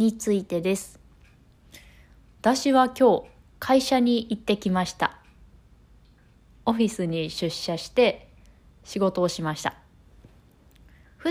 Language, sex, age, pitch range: Japanese, female, 20-39, 180-245 Hz